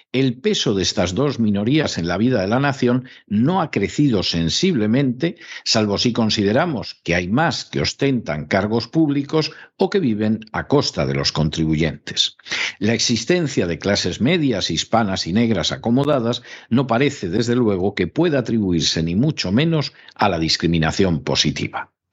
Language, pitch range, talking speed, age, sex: Spanish, 95-140 Hz, 155 wpm, 50-69, male